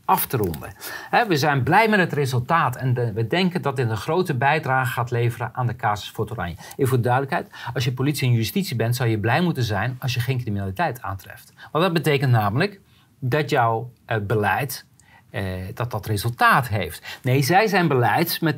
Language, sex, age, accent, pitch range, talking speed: Dutch, male, 40-59, Dutch, 120-155 Hz, 200 wpm